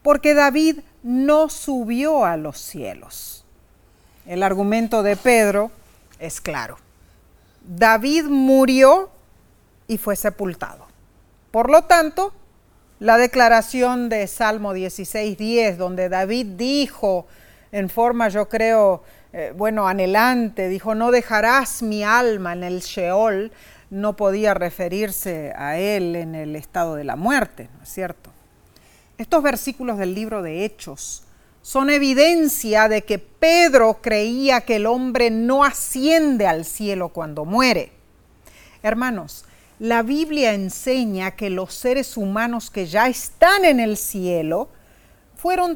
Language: Spanish